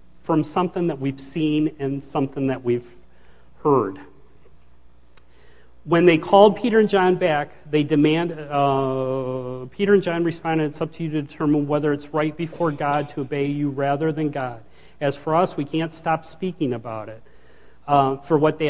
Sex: male